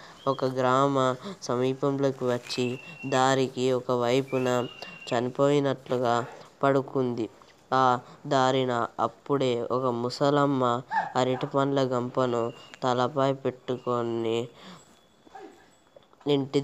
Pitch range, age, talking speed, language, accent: 125-140 Hz, 20-39, 70 wpm, Telugu, native